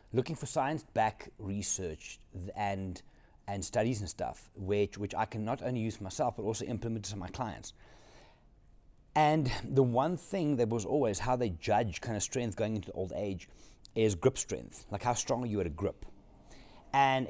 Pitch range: 100-130 Hz